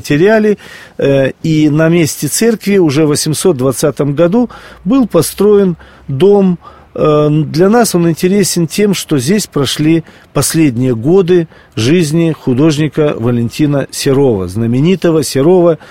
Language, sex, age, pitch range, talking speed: Russian, male, 40-59, 130-170 Hz, 100 wpm